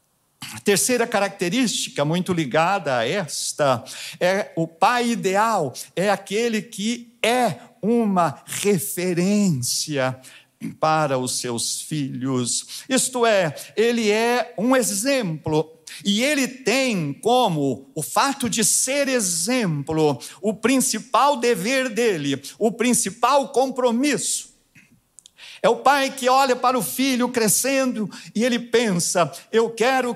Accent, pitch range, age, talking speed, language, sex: Brazilian, 150-235 Hz, 50-69, 115 wpm, Portuguese, male